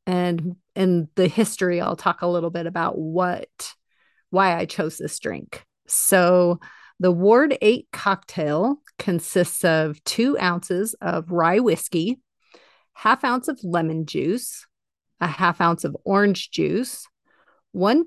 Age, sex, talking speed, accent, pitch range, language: 40-59, female, 135 wpm, American, 165-215 Hz, English